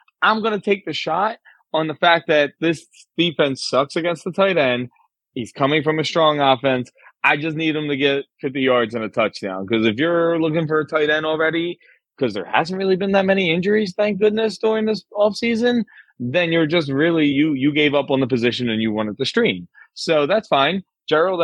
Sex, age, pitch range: male, 30-49, 125-175 Hz